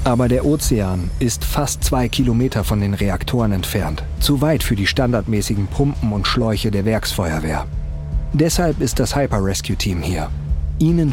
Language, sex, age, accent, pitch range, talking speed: German, male, 40-59, German, 90-125 Hz, 155 wpm